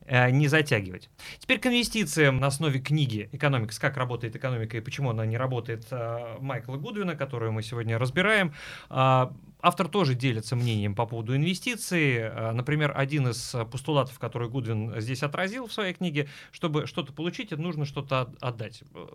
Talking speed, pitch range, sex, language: 145 wpm, 115-150 Hz, male, Russian